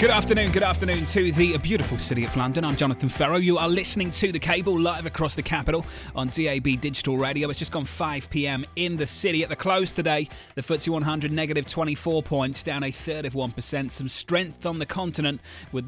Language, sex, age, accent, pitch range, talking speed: English, male, 30-49, British, 125-160 Hz, 210 wpm